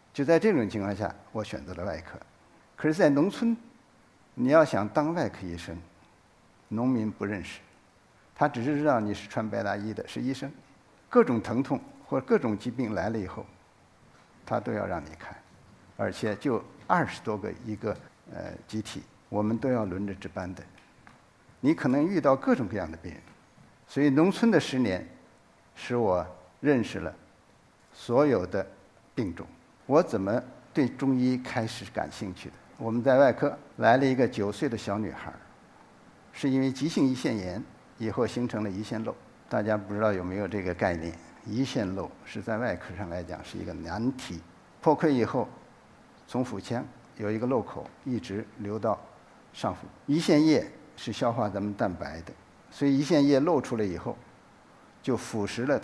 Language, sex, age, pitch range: Chinese, male, 60-79, 100-130 Hz